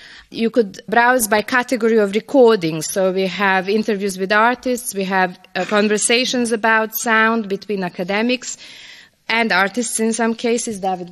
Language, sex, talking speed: English, female, 145 wpm